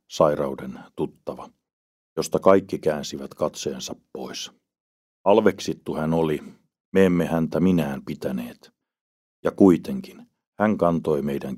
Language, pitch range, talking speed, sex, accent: Finnish, 70-85 Hz, 100 wpm, male, native